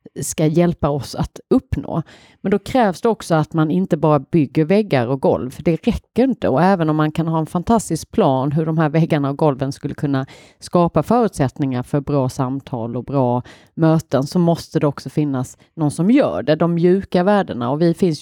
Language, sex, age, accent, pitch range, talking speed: Swedish, female, 40-59, native, 140-180 Hz, 205 wpm